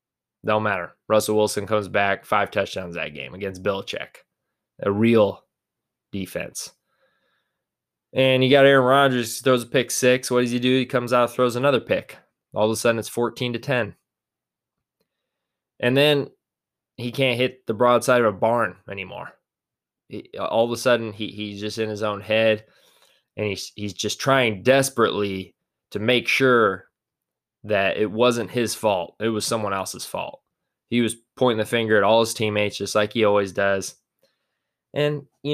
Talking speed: 170 wpm